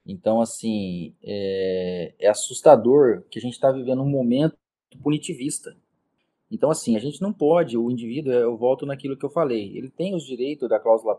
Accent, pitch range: Brazilian, 130-180 Hz